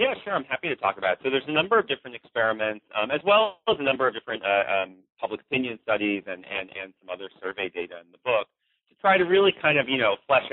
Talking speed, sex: 270 wpm, male